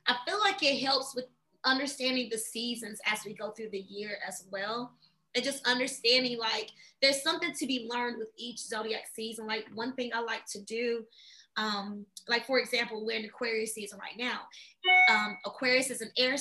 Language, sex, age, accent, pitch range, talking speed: English, female, 20-39, American, 230-275 Hz, 190 wpm